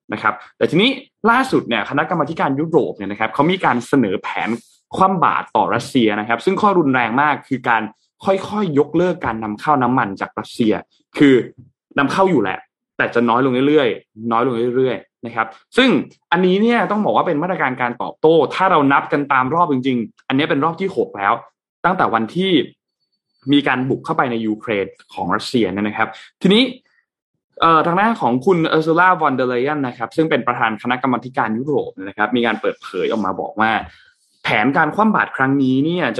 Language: Thai